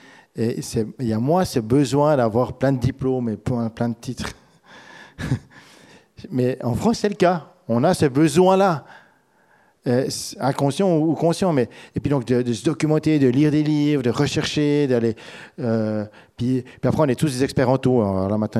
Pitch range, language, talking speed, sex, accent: 110-150 Hz, French, 185 wpm, male, French